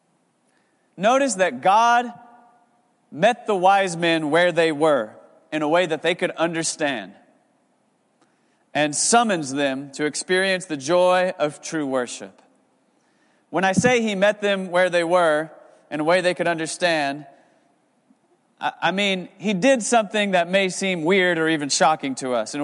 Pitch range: 160-205 Hz